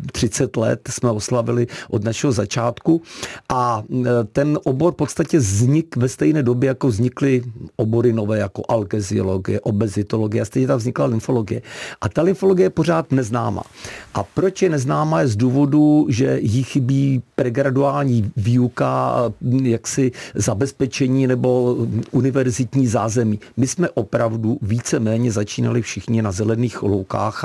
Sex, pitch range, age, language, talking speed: male, 115-135 Hz, 50-69, Czech, 130 wpm